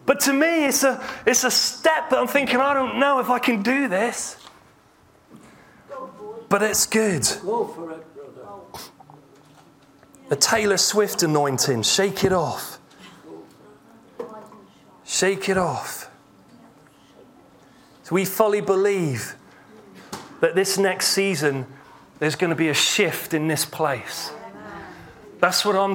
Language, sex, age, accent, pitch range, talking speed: English, male, 30-49, British, 170-245 Hz, 120 wpm